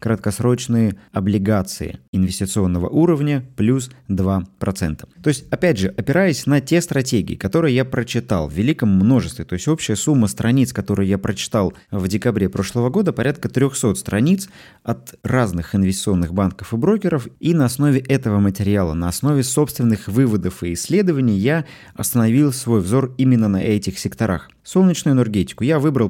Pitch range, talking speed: 100-135 Hz, 145 wpm